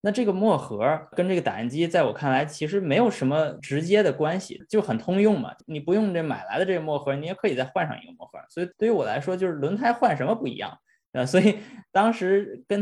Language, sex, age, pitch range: Chinese, male, 20-39, 145-195 Hz